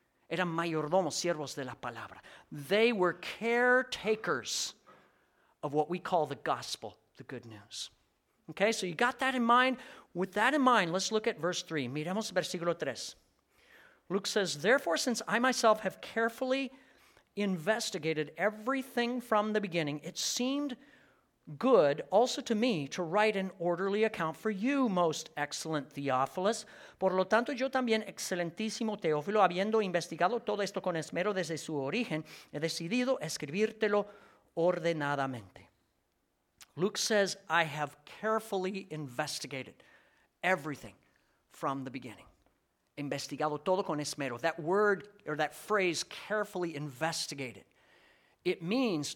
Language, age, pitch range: English, 50-69, 150-215 Hz